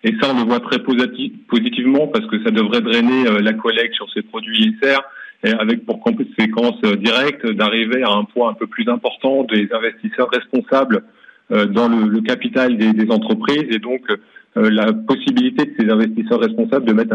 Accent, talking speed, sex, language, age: French, 195 wpm, male, French, 30-49